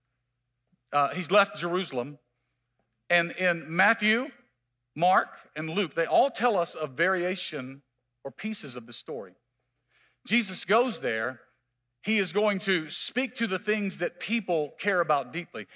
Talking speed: 140 wpm